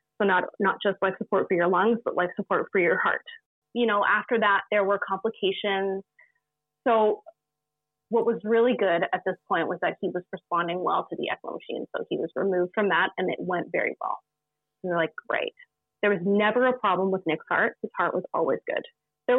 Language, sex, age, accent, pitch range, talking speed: English, female, 30-49, American, 185-225 Hz, 215 wpm